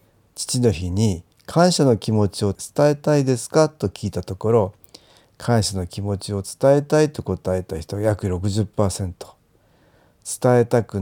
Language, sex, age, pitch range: Japanese, male, 50-69, 100-135 Hz